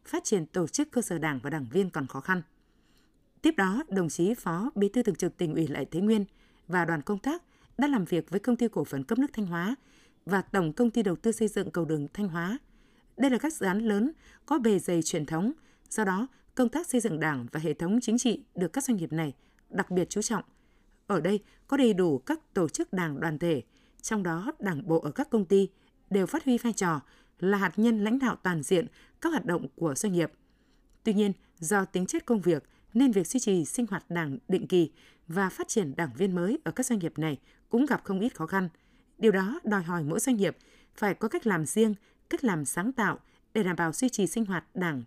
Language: Vietnamese